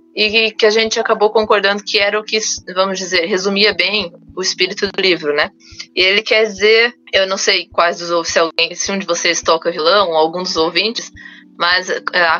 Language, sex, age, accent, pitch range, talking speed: Portuguese, female, 20-39, Brazilian, 175-215 Hz, 200 wpm